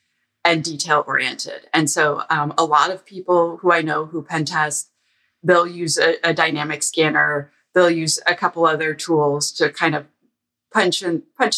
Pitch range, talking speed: 155-190 Hz, 175 wpm